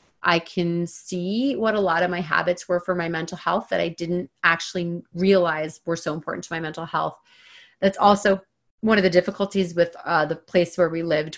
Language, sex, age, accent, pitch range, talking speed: English, female, 30-49, American, 170-205 Hz, 205 wpm